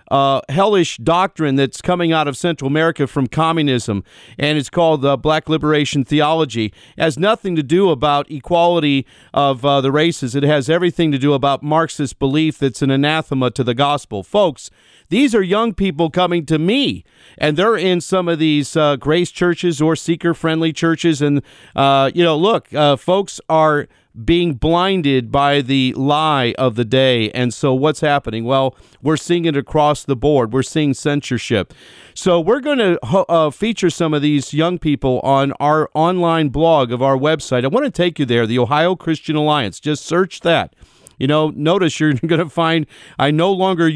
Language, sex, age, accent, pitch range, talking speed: English, male, 50-69, American, 135-170 Hz, 180 wpm